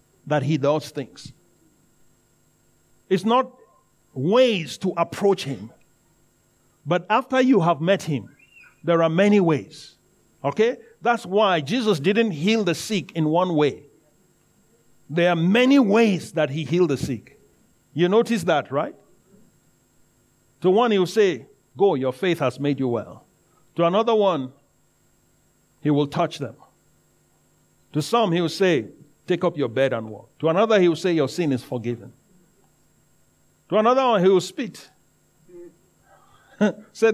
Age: 50-69